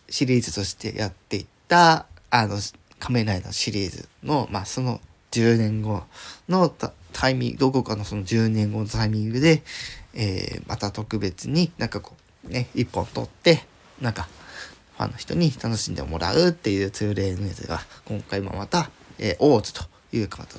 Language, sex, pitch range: Japanese, male, 105-140 Hz